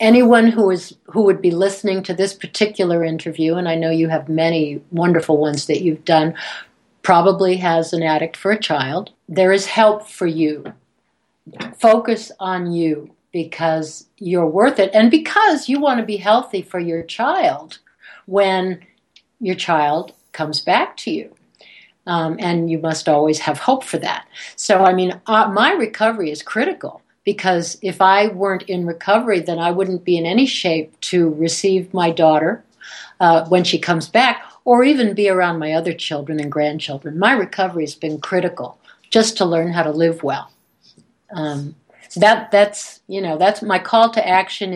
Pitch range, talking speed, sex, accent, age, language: 165-205 Hz, 170 wpm, female, American, 60-79, English